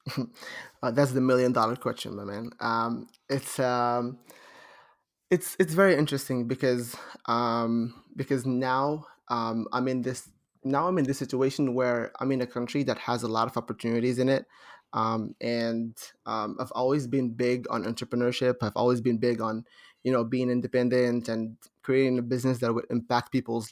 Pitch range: 115-135 Hz